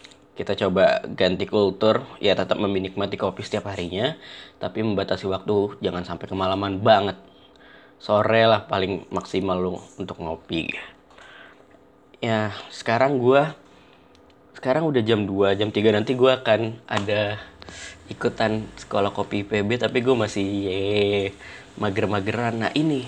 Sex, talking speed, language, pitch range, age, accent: male, 125 wpm, Indonesian, 100-125 Hz, 20-39, native